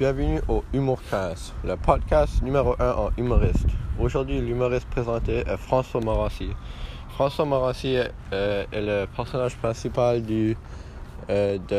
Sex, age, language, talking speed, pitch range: male, 20-39, French, 130 wpm, 95-125 Hz